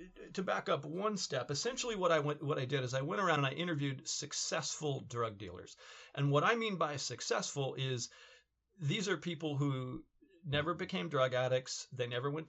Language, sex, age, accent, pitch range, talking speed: English, male, 40-59, American, 125-155 Hz, 190 wpm